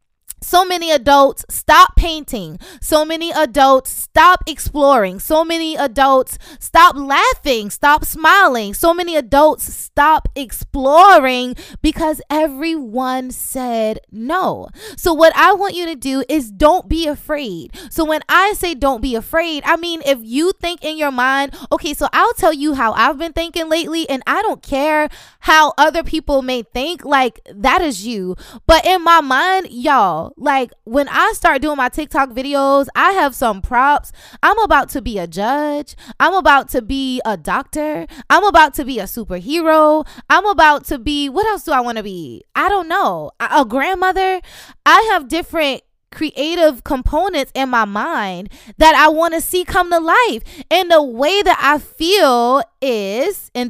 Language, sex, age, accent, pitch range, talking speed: English, female, 20-39, American, 265-330 Hz, 170 wpm